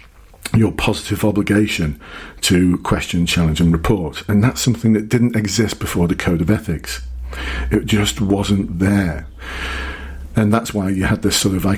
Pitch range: 85-110 Hz